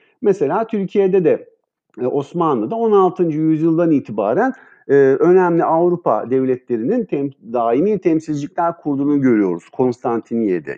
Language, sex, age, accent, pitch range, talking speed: Turkish, male, 50-69, native, 130-190 Hz, 95 wpm